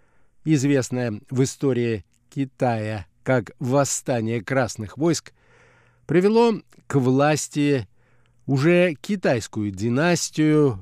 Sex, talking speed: male, 80 wpm